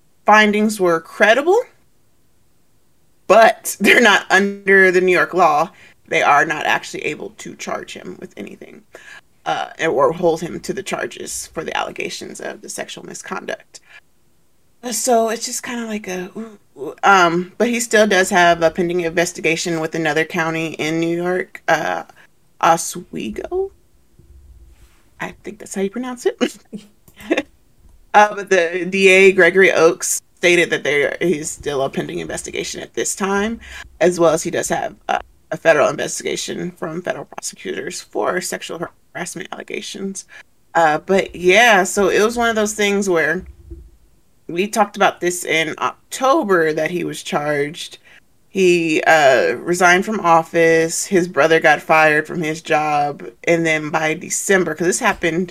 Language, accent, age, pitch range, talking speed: English, American, 30-49, 165-205 Hz, 150 wpm